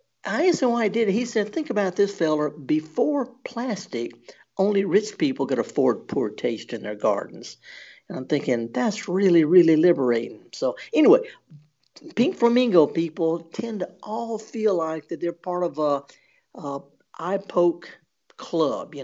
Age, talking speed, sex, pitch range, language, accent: 50-69, 155 wpm, male, 150-200 Hz, English, American